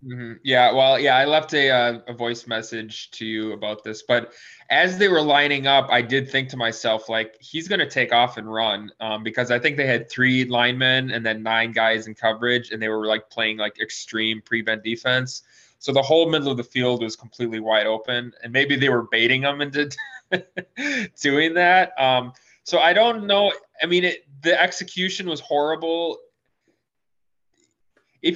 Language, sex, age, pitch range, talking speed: English, male, 20-39, 115-145 Hz, 190 wpm